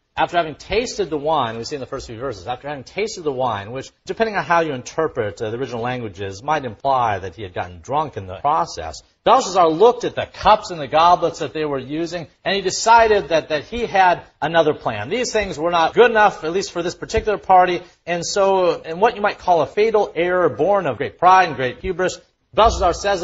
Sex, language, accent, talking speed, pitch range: male, English, American, 225 wpm, 110-175 Hz